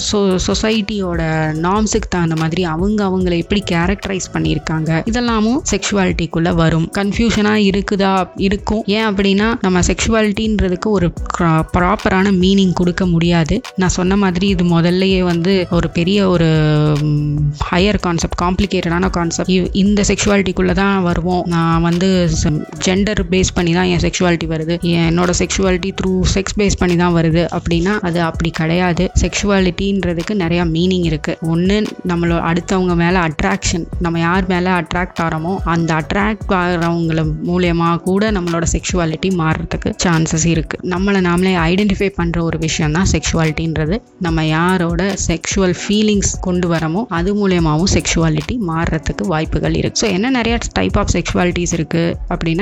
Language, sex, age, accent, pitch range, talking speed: Tamil, female, 20-39, native, 170-195 Hz, 75 wpm